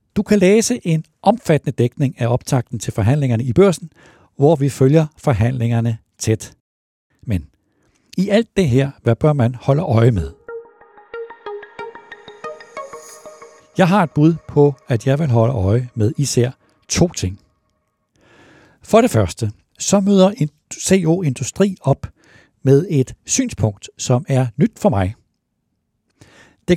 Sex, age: male, 60-79